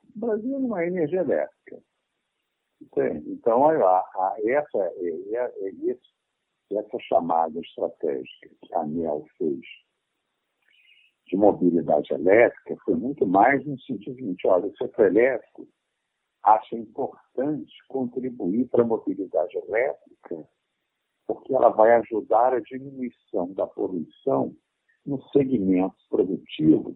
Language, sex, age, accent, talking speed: Portuguese, male, 60-79, Brazilian, 105 wpm